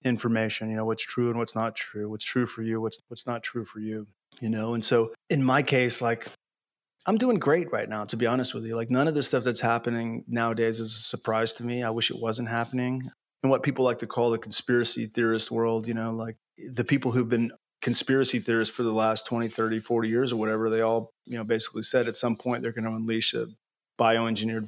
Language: English